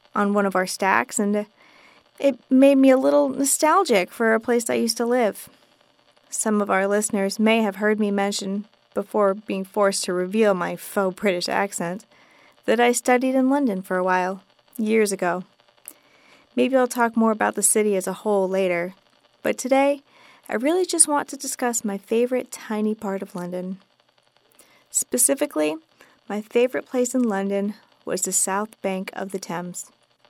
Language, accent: English, American